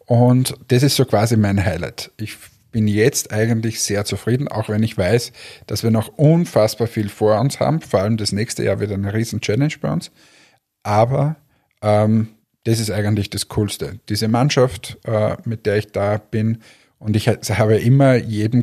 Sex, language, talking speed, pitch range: male, German, 180 wpm, 105-125 Hz